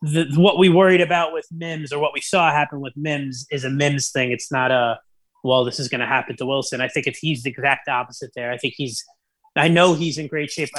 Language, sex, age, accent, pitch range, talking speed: English, male, 20-39, American, 140-170 Hz, 250 wpm